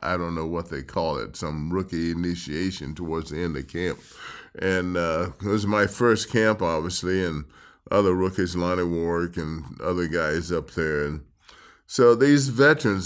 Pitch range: 95-135 Hz